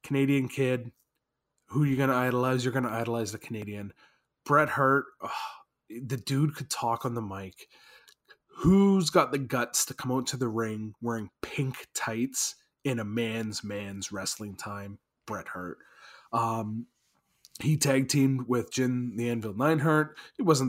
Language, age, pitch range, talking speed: English, 20-39, 110-130 Hz, 160 wpm